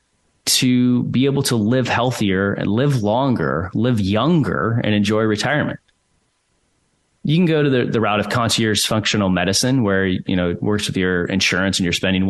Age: 30-49